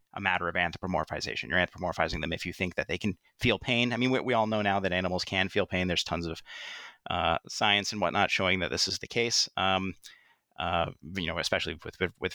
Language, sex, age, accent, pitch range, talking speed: English, male, 30-49, American, 90-105 Hz, 235 wpm